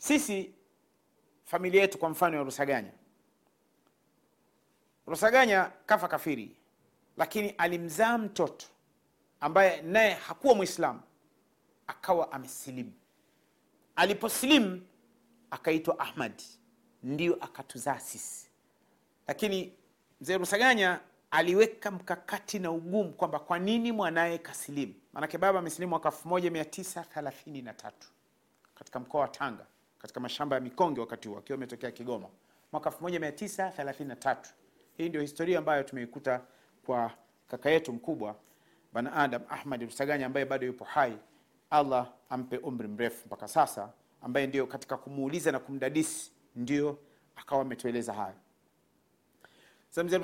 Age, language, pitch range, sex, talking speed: 40-59, Swahili, 135-190 Hz, male, 105 wpm